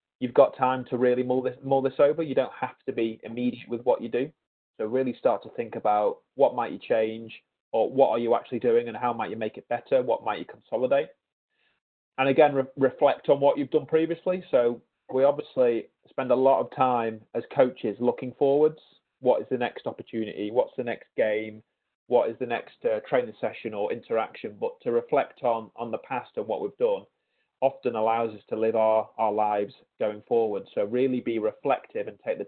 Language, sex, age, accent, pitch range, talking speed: English, male, 30-49, British, 115-160 Hz, 210 wpm